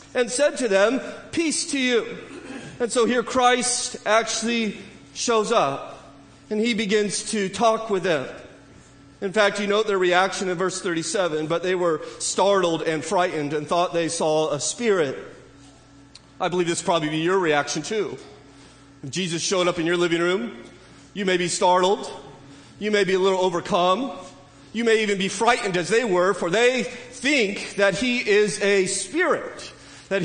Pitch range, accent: 185-225 Hz, American